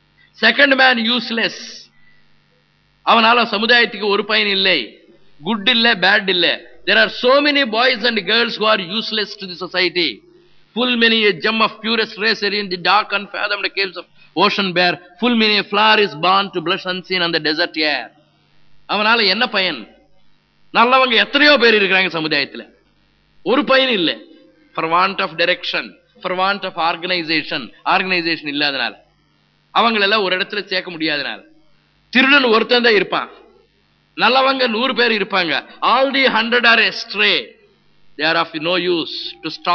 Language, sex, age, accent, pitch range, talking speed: Tamil, male, 50-69, native, 175-235 Hz, 145 wpm